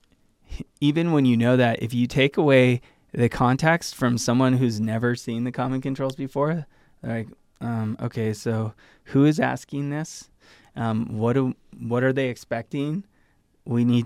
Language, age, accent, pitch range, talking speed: English, 20-39, American, 115-135 Hz, 160 wpm